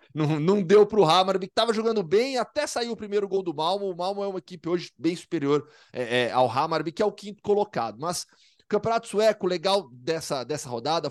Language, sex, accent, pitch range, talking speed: Portuguese, male, Brazilian, 155-205 Hz, 225 wpm